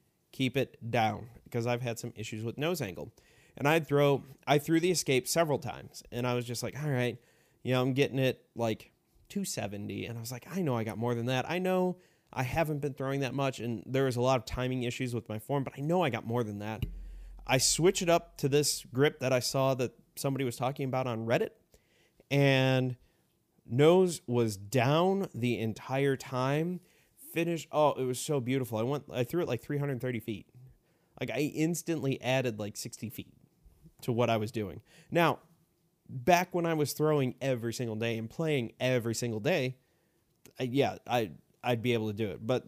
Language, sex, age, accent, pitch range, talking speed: English, male, 30-49, American, 120-150 Hz, 205 wpm